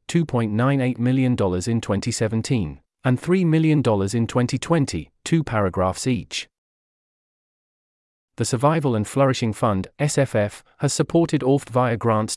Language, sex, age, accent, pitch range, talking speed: English, male, 40-59, British, 110-135 Hz, 105 wpm